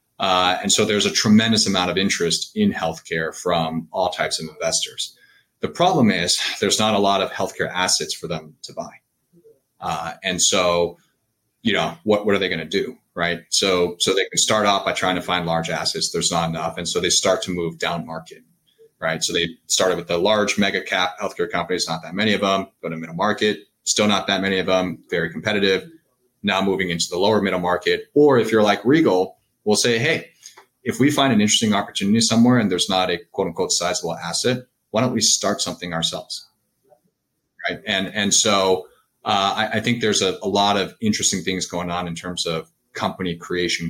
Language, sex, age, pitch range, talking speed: English, male, 30-49, 85-110 Hz, 205 wpm